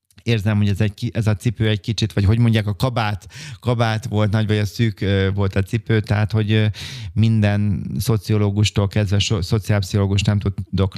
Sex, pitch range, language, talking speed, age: male, 100-110 Hz, Hungarian, 175 wpm, 30-49